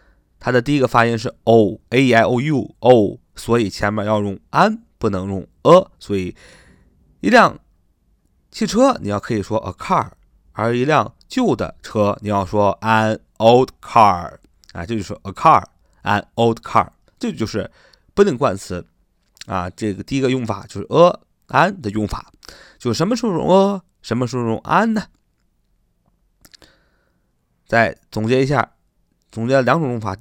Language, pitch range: Chinese, 100-140 Hz